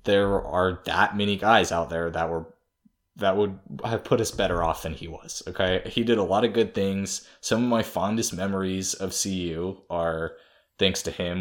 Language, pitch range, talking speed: English, 90-105 Hz, 200 wpm